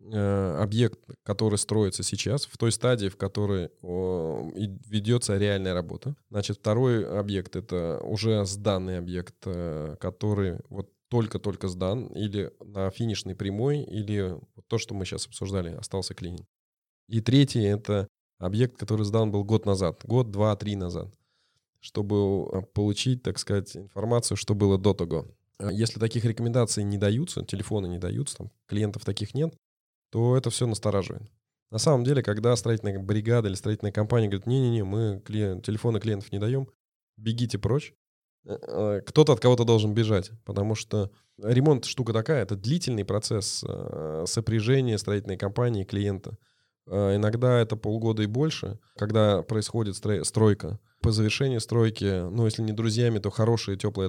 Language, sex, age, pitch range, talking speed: Russian, male, 20-39, 100-115 Hz, 140 wpm